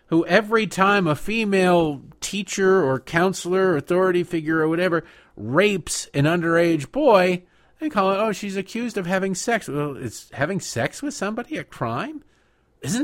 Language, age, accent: English, 50-69, American